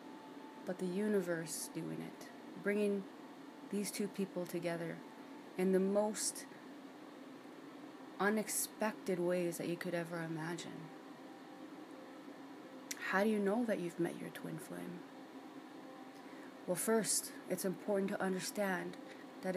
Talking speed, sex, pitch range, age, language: 115 wpm, female, 195-285 Hz, 30-49, English